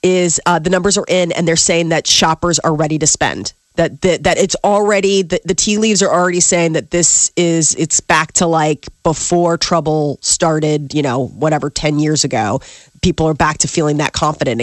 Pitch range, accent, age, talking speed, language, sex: 165-200 Hz, American, 30-49, 205 wpm, English, female